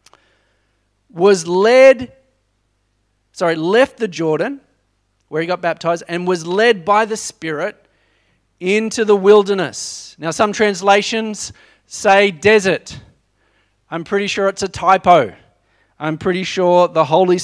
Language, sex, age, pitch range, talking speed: English, male, 30-49, 130-200 Hz, 120 wpm